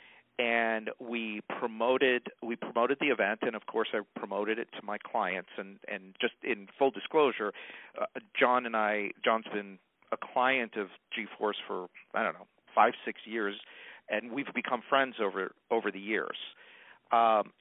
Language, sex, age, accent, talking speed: English, male, 50-69, American, 165 wpm